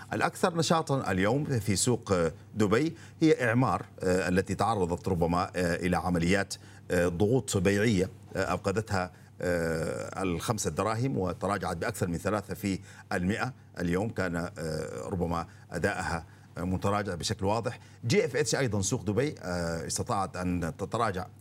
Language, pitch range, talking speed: Arabic, 90-115 Hz, 110 wpm